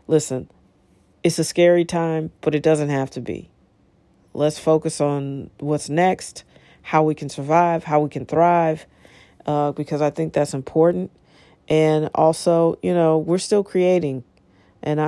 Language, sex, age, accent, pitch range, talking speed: English, female, 40-59, American, 150-165 Hz, 150 wpm